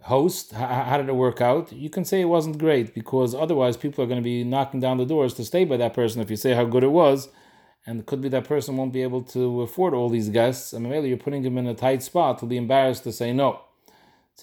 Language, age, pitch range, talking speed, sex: English, 40-59, 120-145 Hz, 280 wpm, male